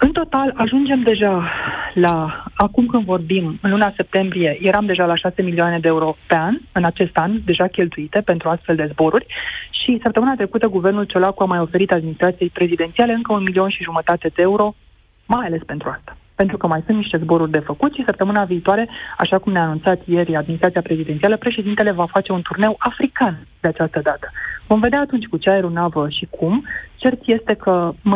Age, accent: 30-49, native